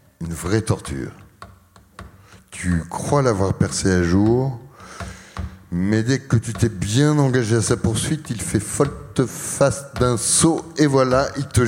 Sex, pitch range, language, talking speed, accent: male, 95-135 Hz, French, 150 wpm, French